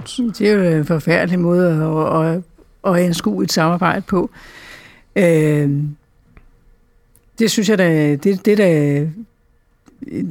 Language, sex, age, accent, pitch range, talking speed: Danish, female, 60-79, native, 170-210 Hz, 105 wpm